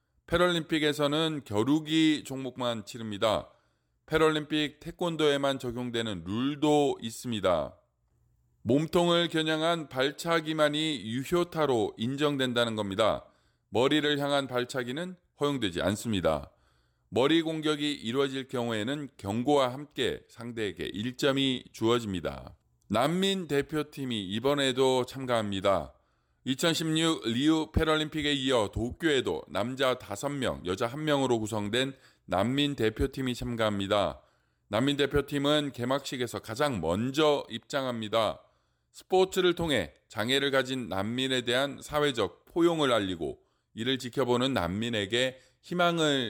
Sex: male